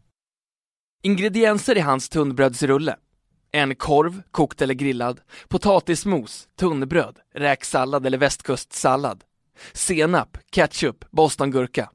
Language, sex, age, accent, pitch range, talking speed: Swedish, male, 20-39, native, 130-155 Hz, 85 wpm